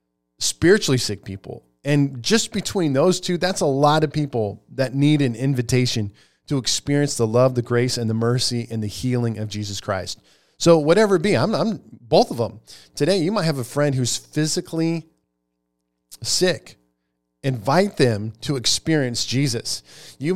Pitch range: 115-160 Hz